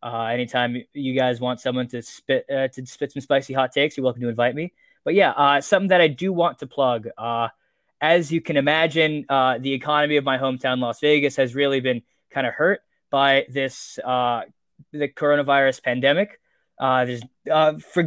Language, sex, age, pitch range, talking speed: English, male, 20-39, 125-150 Hz, 195 wpm